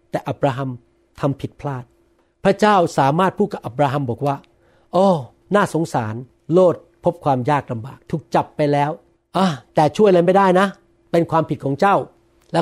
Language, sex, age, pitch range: Thai, male, 60-79, 135-180 Hz